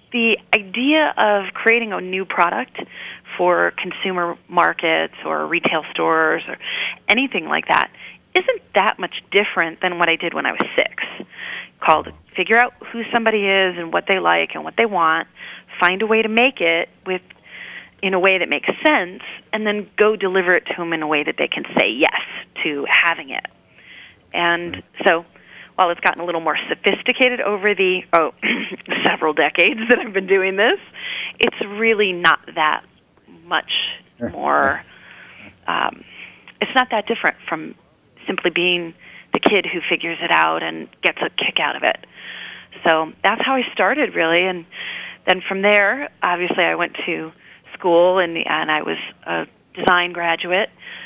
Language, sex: English, female